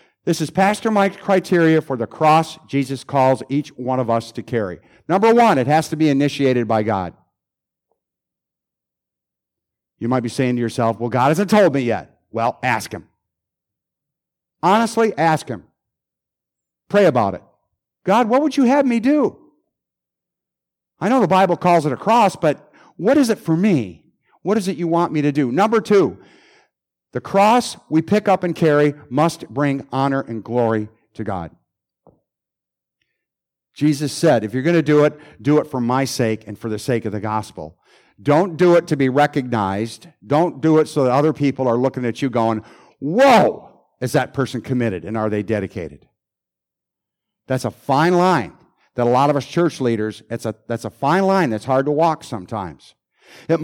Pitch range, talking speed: 115-170 Hz, 180 wpm